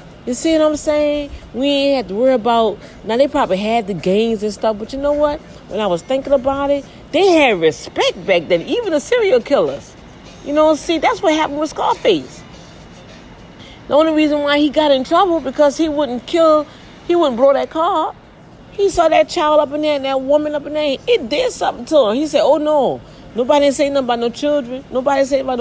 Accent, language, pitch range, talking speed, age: American, English, 235-305 Hz, 220 wpm, 40-59